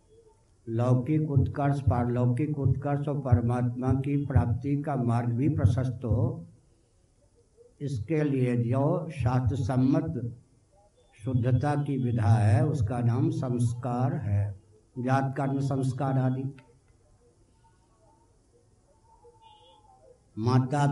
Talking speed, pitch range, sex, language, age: 85 wpm, 115-140 Hz, male, Hindi, 60-79